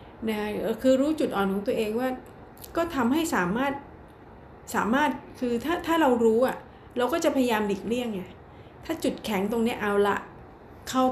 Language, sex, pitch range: Thai, female, 200-255 Hz